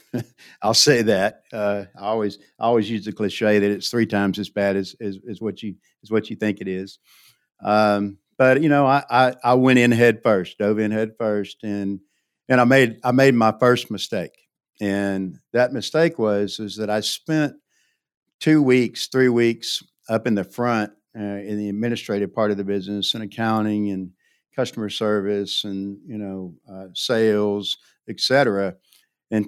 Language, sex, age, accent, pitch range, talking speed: English, male, 60-79, American, 100-115 Hz, 180 wpm